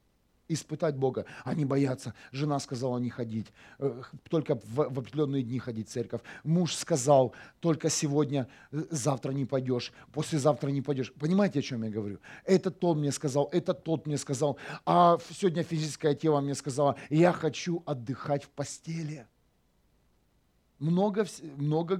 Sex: male